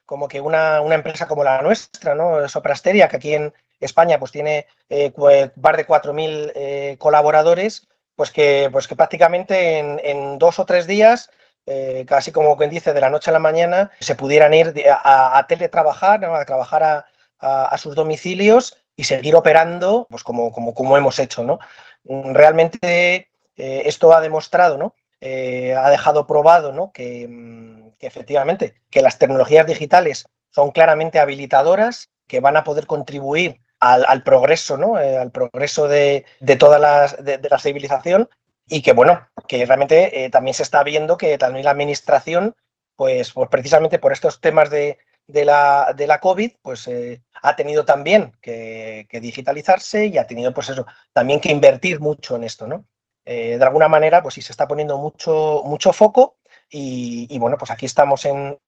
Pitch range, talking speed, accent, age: 135-170 Hz, 170 wpm, Spanish, 30-49